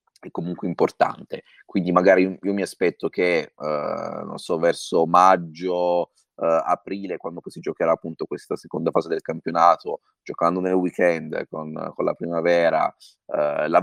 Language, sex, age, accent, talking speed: Italian, male, 30-49, native, 135 wpm